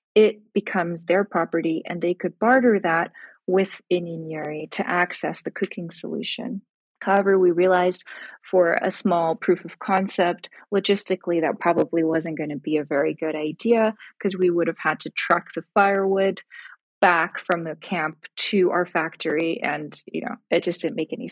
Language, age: English, 30-49